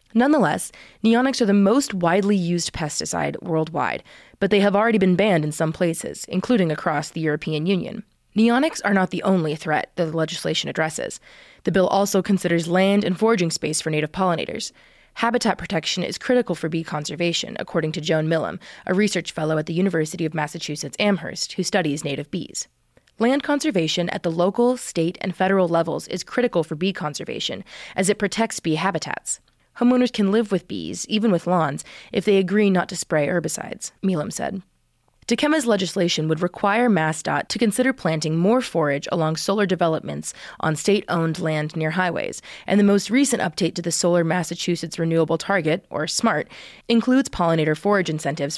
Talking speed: 170 wpm